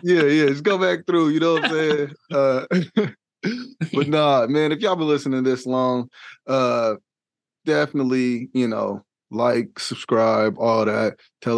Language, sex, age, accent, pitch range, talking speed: English, male, 20-39, American, 115-140 Hz, 155 wpm